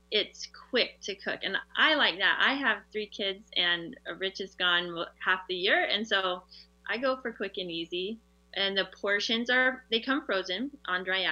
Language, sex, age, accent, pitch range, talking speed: English, female, 20-39, American, 185-225 Hz, 190 wpm